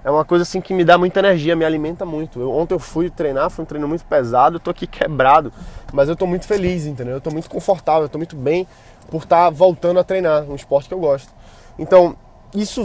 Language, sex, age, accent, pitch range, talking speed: Portuguese, male, 20-39, Brazilian, 140-185 Hz, 245 wpm